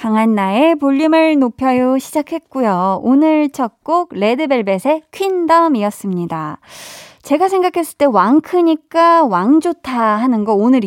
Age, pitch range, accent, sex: 20-39, 205-300 Hz, native, female